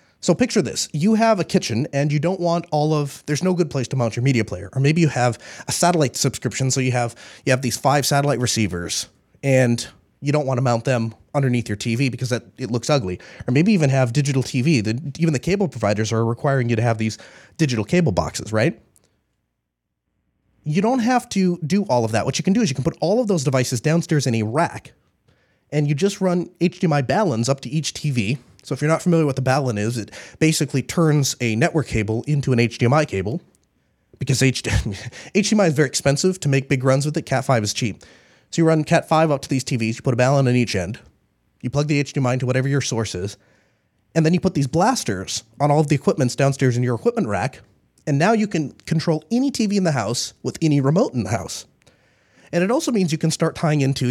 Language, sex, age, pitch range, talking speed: English, male, 30-49, 120-160 Hz, 230 wpm